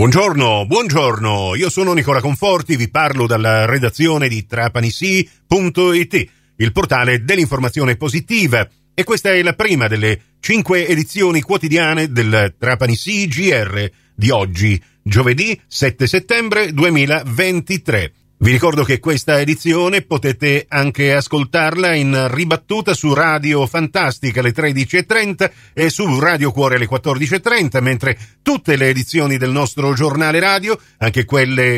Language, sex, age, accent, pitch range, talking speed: Italian, male, 40-59, native, 120-175 Hz, 125 wpm